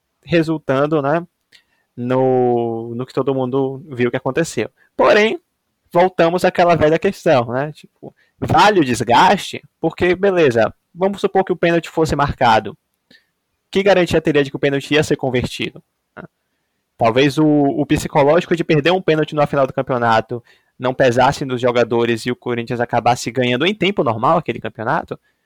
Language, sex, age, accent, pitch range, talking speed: Portuguese, male, 20-39, Brazilian, 120-160 Hz, 155 wpm